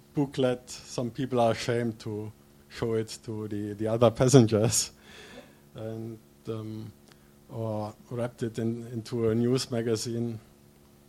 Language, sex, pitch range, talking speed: Swedish, male, 115-140 Hz, 125 wpm